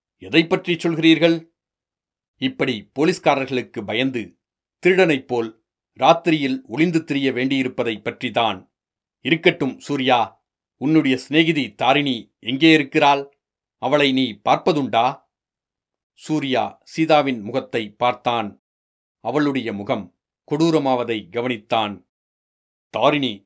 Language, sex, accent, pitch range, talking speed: Tamil, male, native, 120-145 Hz, 80 wpm